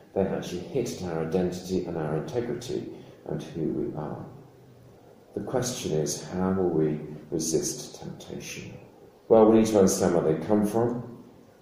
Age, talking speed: 40-59, 155 wpm